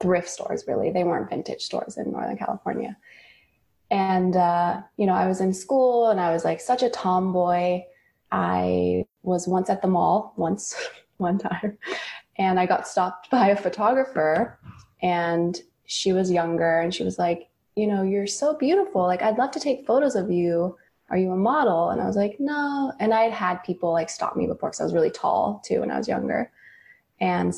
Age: 20-39